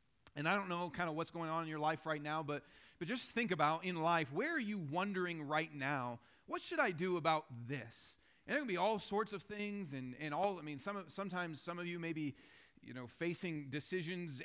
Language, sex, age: English, male, 40-59